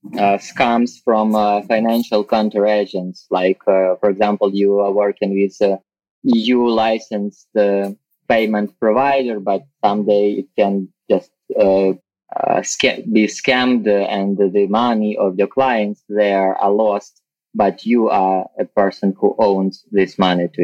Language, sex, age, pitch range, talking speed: English, male, 20-39, 100-120 Hz, 140 wpm